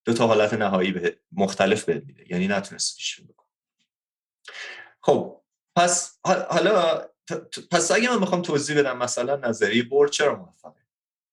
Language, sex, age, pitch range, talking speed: English, male, 30-49, 110-180 Hz, 145 wpm